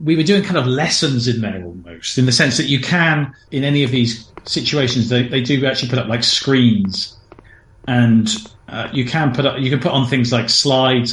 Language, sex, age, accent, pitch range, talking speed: English, male, 40-59, British, 110-135 Hz, 220 wpm